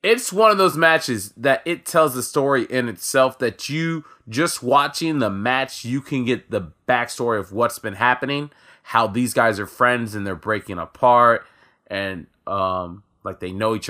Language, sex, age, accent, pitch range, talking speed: English, male, 20-39, American, 100-150 Hz, 180 wpm